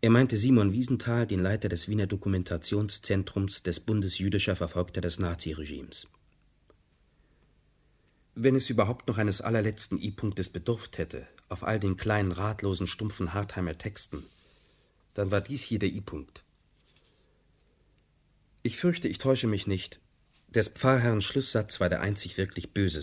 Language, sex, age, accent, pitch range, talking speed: German, male, 40-59, German, 90-110 Hz, 135 wpm